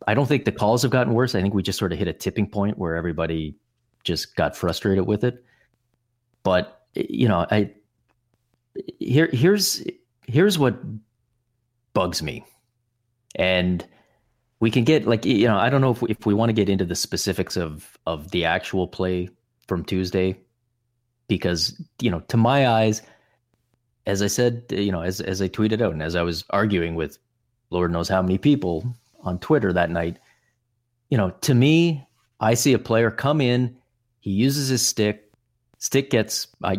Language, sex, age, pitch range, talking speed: English, male, 30-49, 95-120 Hz, 180 wpm